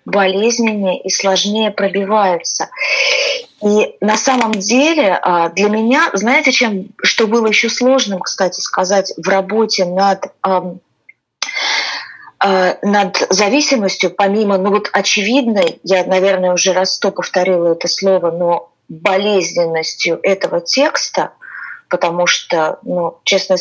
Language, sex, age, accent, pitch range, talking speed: Russian, female, 30-49, native, 180-220 Hz, 115 wpm